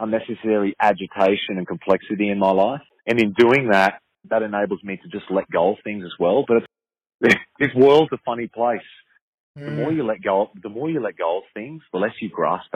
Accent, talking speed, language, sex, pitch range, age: Australian, 215 wpm, English, male, 90-115 Hz, 30-49